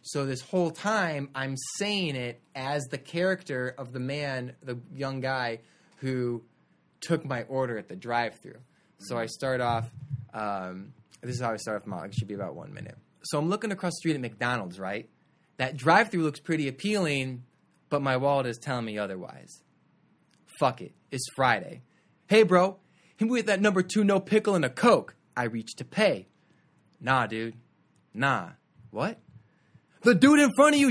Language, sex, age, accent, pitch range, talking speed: English, male, 20-39, American, 130-210 Hz, 180 wpm